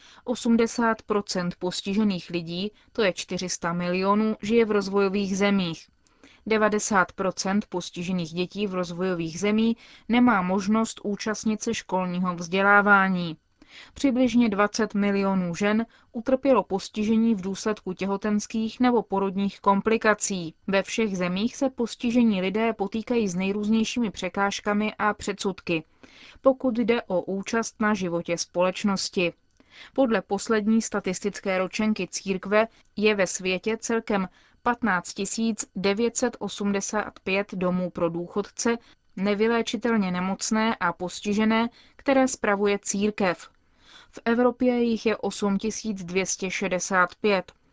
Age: 20-39